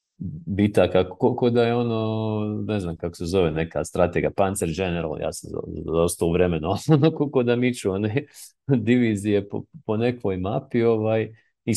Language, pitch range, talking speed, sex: English, 90-120 Hz, 140 wpm, male